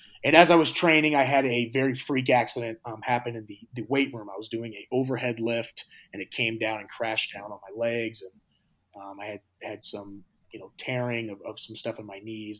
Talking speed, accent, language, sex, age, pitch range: 240 wpm, American, French, male, 30-49, 115-145 Hz